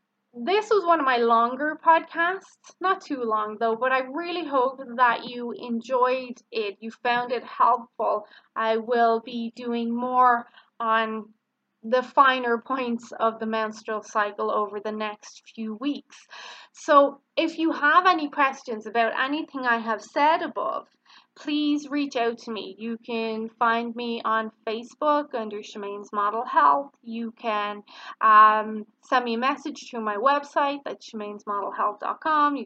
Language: English